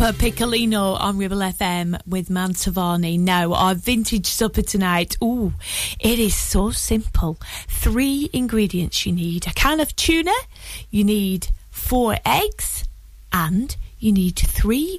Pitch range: 175-240 Hz